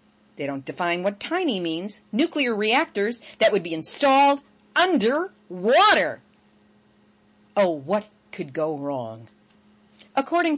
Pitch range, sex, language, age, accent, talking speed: 170-270 Hz, female, English, 50-69, American, 115 wpm